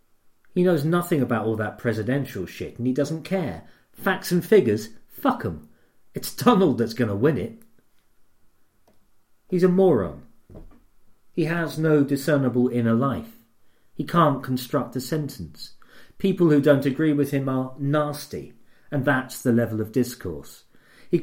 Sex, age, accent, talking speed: male, 40-59, British, 150 wpm